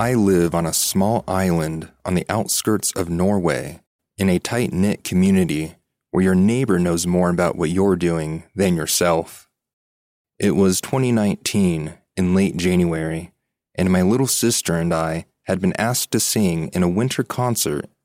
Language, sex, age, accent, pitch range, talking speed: English, male, 30-49, American, 85-100 Hz, 155 wpm